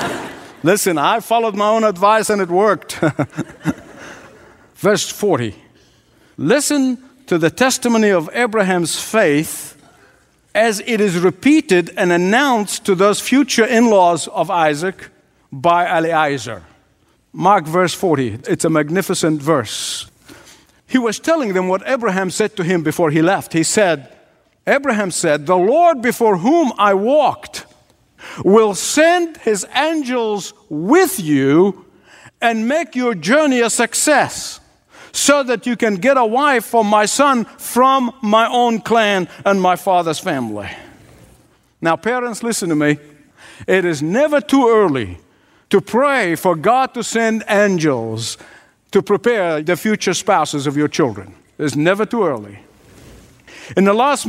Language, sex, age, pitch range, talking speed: English, male, 50-69, 170-240 Hz, 135 wpm